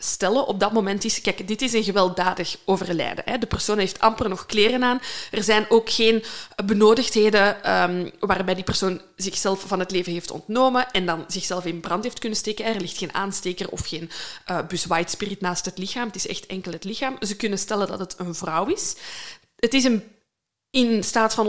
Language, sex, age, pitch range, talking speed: Dutch, female, 20-39, 185-230 Hz, 195 wpm